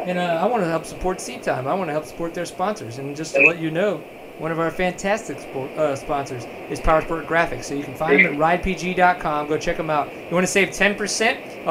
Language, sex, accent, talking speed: English, male, American, 245 wpm